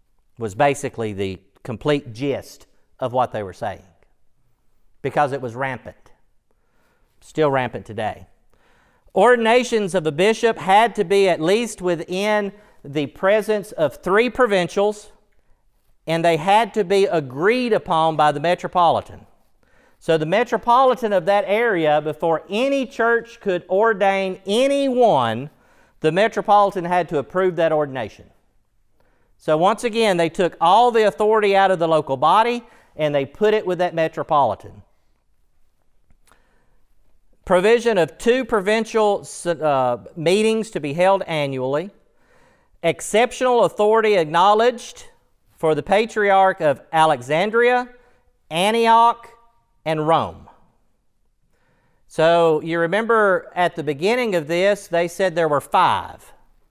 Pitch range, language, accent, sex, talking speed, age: 145-215 Hz, English, American, male, 120 wpm, 40-59